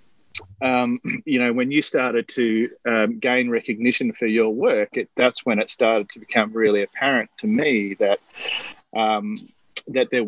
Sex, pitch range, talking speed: male, 110-165 Hz, 165 wpm